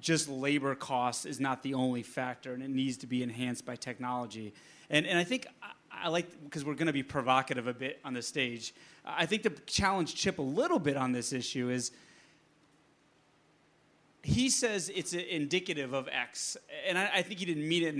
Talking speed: 205 wpm